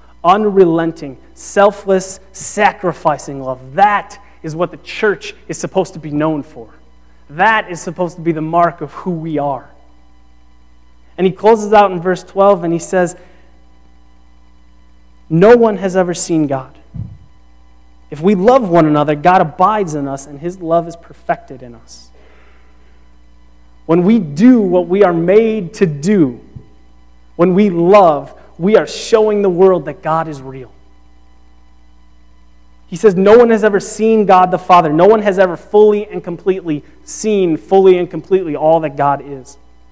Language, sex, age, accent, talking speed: English, male, 30-49, American, 155 wpm